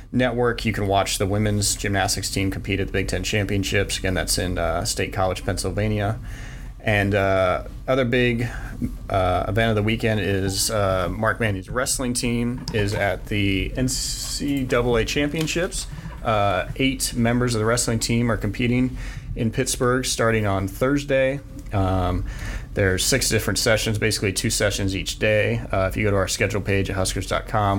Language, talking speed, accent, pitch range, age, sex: English, 160 wpm, American, 95-120 Hz, 30-49, male